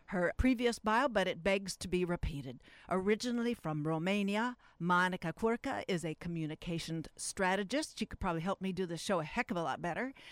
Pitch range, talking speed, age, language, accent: 160-200 Hz, 185 wpm, 50-69, English, American